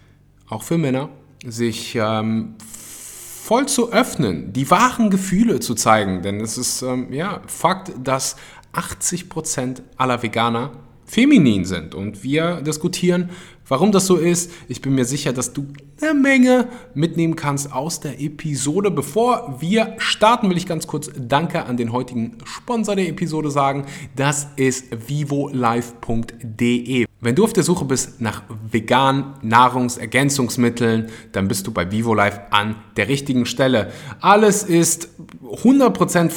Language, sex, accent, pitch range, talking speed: German, male, German, 120-170 Hz, 135 wpm